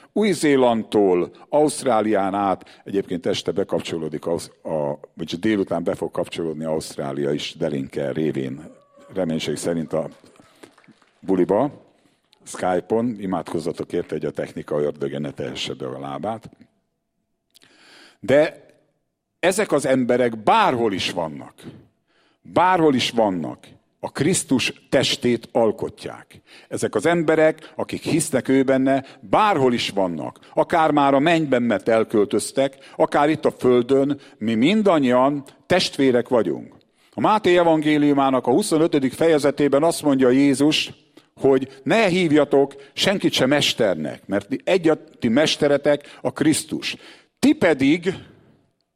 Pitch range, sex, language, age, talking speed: 110-150 Hz, male, English, 50-69, 110 wpm